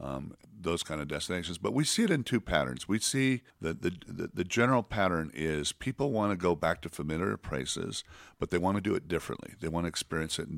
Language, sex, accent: English, male, American